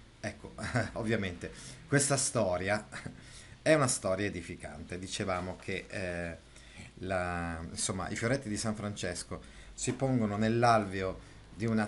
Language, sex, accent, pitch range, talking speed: Italian, male, native, 90-125 Hz, 115 wpm